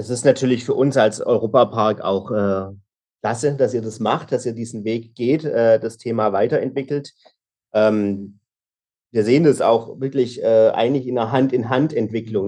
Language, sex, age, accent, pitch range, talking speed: German, male, 40-59, German, 110-135 Hz, 165 wpm